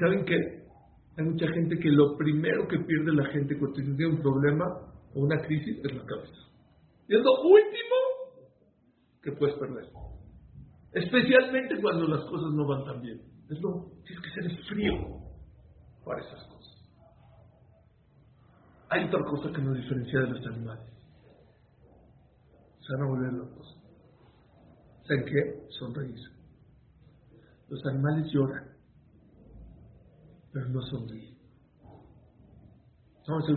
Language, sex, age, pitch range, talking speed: English, male, 50-69, 125-165 Hz, 125 wpm